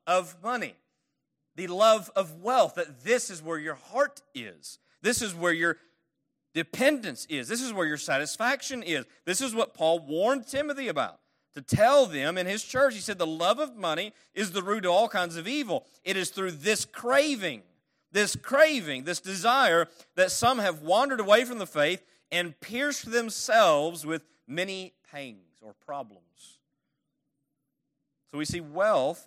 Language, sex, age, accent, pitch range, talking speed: English, male, 40-59, American, 140-210 Hz, 165 wpm